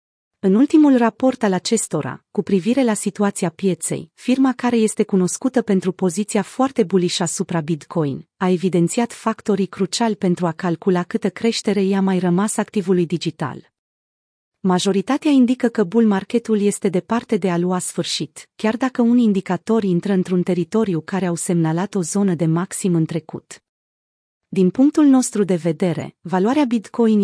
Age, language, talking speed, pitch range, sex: 30-49, Romanian, 150 wpm, 180-220 Hz, female